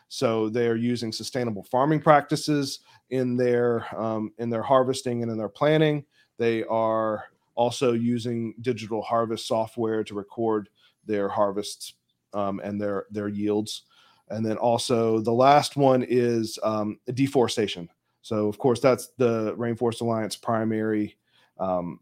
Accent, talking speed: American, 135 wpm